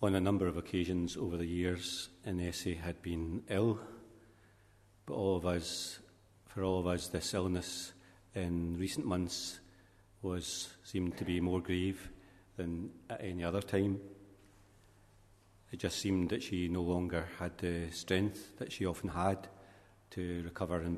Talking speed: 140 wpm